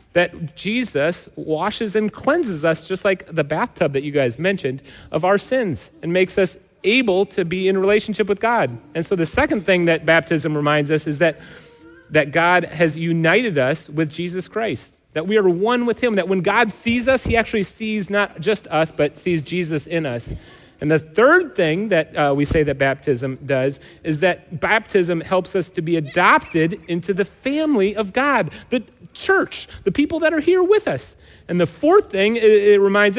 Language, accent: English, American